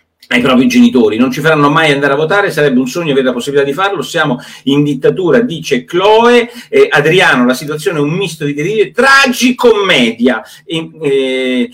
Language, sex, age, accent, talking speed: Italian, male, 40-59, native, 185 wpm